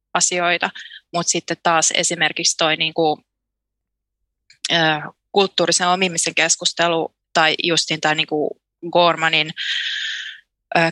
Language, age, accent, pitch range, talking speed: Finnish, 20-39, native, 165-185 Hz, 90 wpm